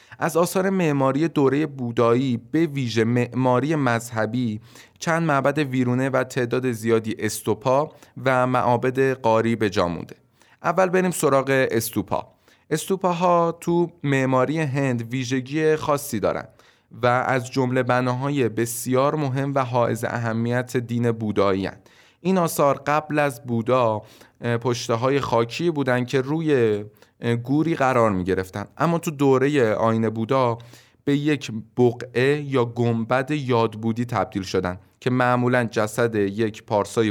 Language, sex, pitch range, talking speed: Persian, male, 115-140 Hz, 125 wpm